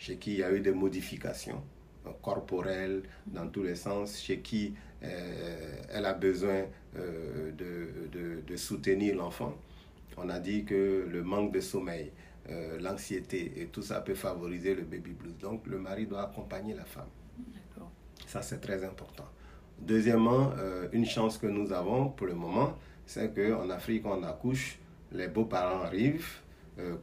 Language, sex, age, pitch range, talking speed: French, male, 50-69, 85-105 Hz, 160 wpm